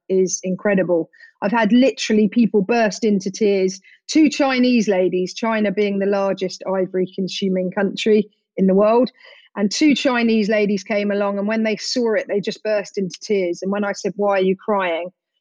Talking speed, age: 180 wpm, 40-59